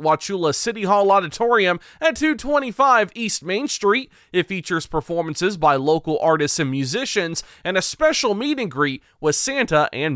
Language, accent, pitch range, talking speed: English, American, 165-235 Hz, 155 wpm